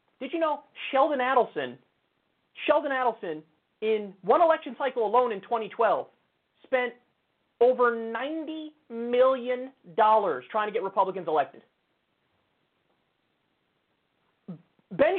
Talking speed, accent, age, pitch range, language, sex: 95 wpm, American, 30-49, 220-305 Hz, English, male